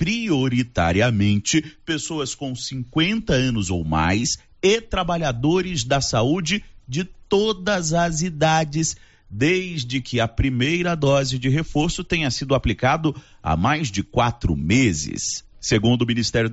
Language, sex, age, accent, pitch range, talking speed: Portuguese, male, 40-59, Brazilian, 110-160 Hz, 120 wpm